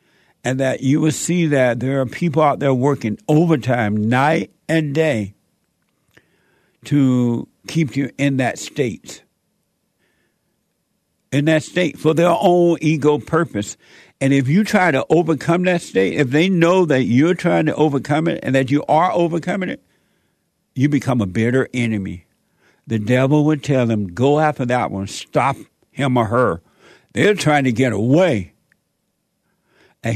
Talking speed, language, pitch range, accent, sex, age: 155 wpm, English, 125-160 Hz, American, male, 60-79